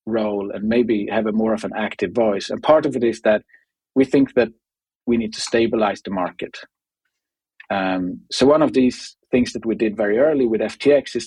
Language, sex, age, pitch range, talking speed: English, male, 40-59, 105-125 Hz, 210 wpm